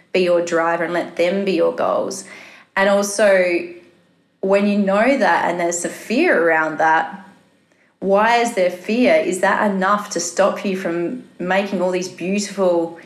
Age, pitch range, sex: 30-49, 175-195 Hz, female